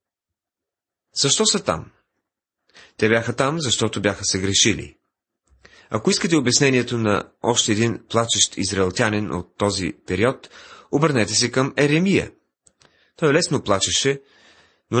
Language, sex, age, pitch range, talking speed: Bulgarian, male, 30-49, 100-140 Hz, 115 wpm